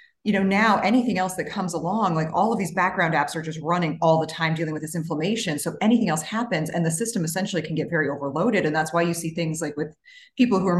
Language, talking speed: English, 260 wpm